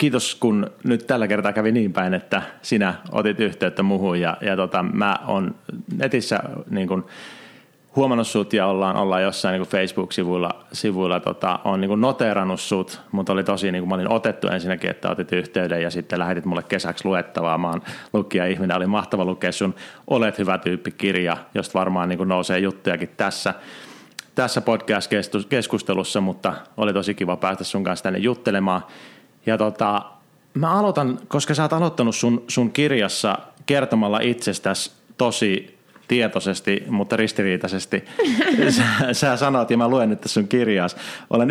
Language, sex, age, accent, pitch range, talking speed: Finnish, male, 30-49, native, 95-120 Hz, 155 wpm